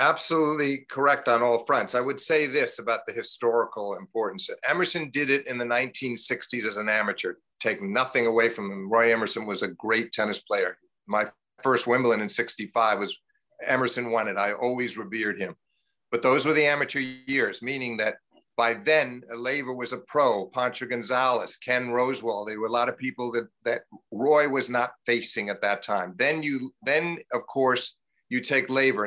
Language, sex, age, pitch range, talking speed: English, male, 50-69, 115-140 Hz, 180 wpm